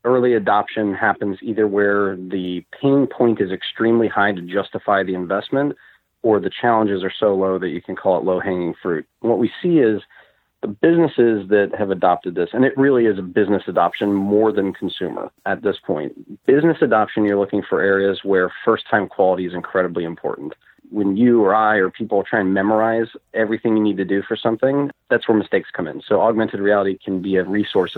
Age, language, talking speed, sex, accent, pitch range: 40-59, English, 195 wpm, male, American, 95-110 Hz